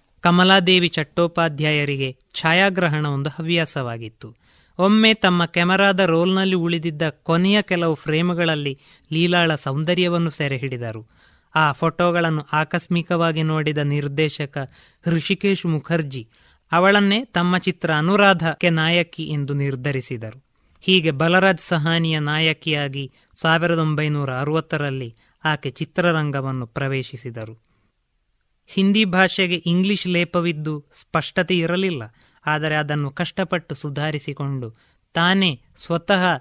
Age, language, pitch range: 20-39, Kannada, 140-175 Hz